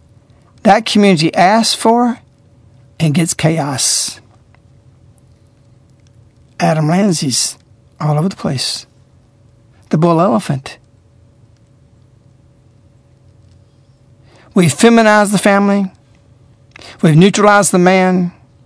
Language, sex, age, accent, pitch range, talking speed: English, male, 60-79, American, 115-170 Hz, 75 wpm